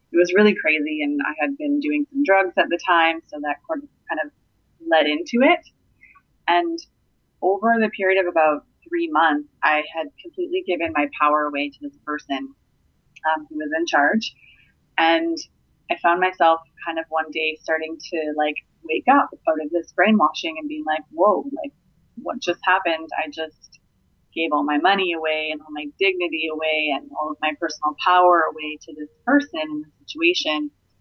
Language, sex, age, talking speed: English, female, 20-39, 180 wpm